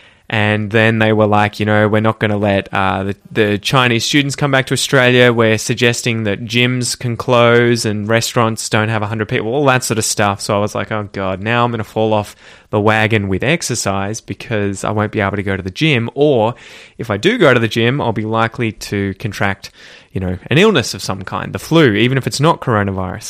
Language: English